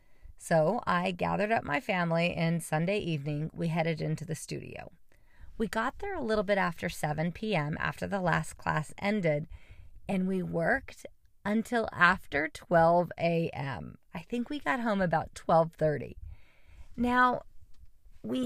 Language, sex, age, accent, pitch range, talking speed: English, female, 40-59, American, 160-205 Hz, 145 wpm